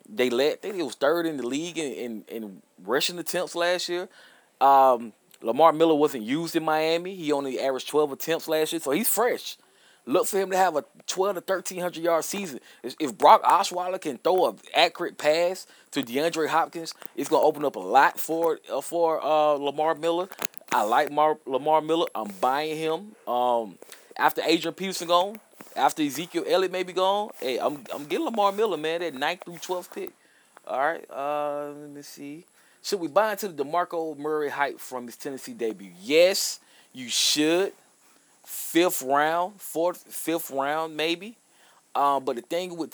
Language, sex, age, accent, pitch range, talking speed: English, male, 20-39, American, 140-180 Hz, 185 wpm